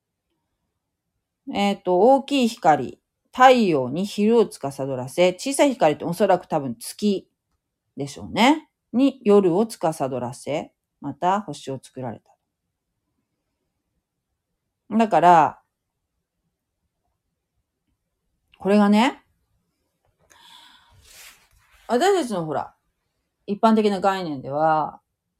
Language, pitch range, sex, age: Japanese, 140-225 Hz, female, 40-59